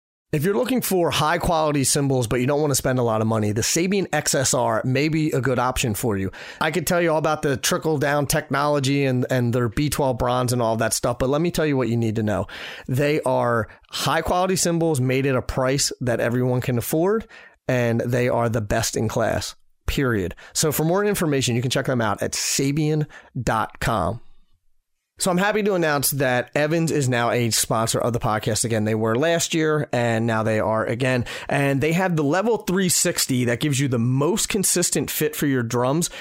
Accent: American